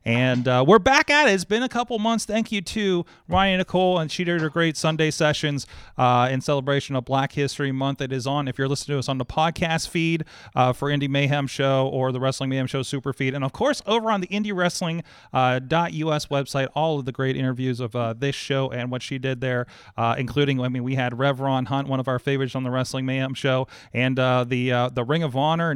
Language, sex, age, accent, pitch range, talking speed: English, male, 30-49, American, 130-165 Hz, 240 wpm